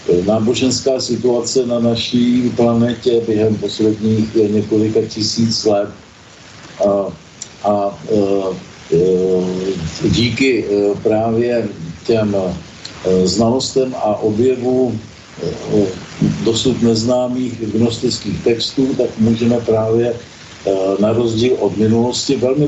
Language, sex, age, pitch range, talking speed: Slovak, male, 50-69, 105-125 Hz, 80 wpm